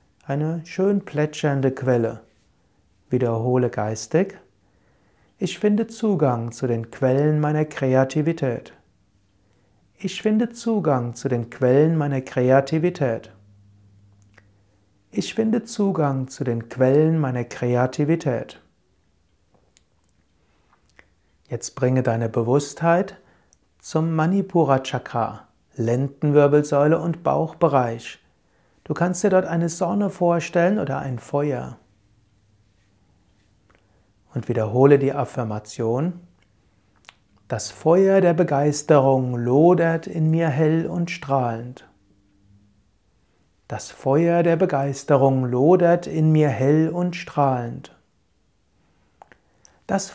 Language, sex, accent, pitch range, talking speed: German, male, German, 105-160 Hz, 90 wpm